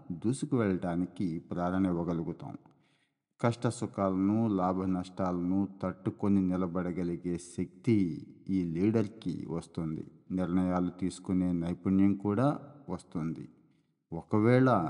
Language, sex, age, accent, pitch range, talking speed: Telugu, male, 50-69, native, 90-105 Hz, 80 wpm